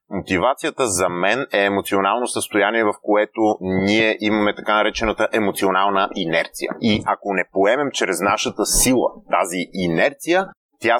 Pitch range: 105-145 Hz